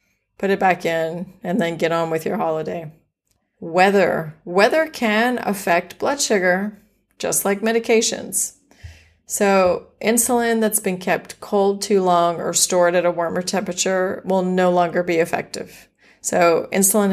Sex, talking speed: female, 145 wpm